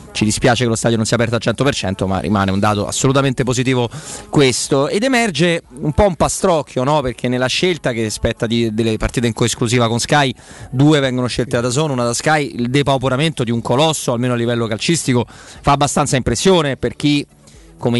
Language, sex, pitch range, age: Italian, male, 115-140 Hz, 30-49